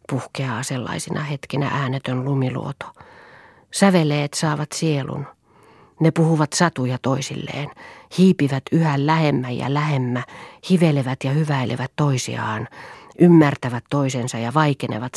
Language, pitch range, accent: Finnish, 135-155 Hz, native